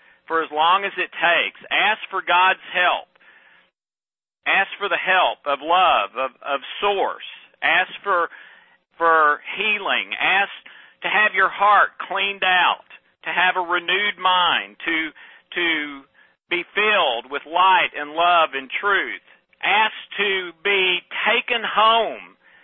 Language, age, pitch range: English, 50-69, 165-200 Hz